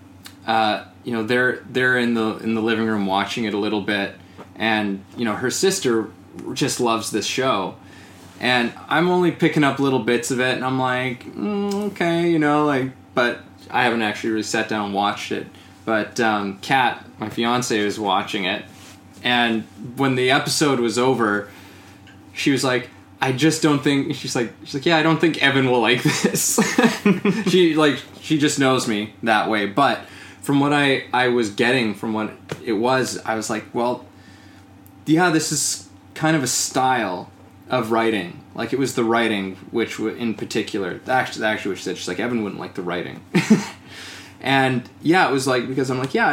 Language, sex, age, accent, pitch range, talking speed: English, male, 20-39, American, 100-135 Hz, 195 wpm